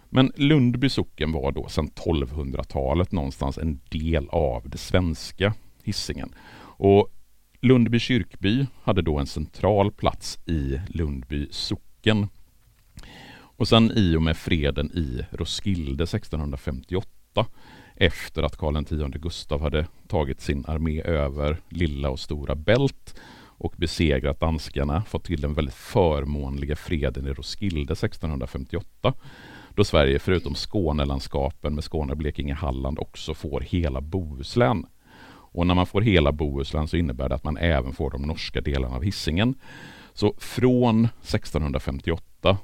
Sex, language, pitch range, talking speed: male, Swedish, 70-95 Hz, 125 wpm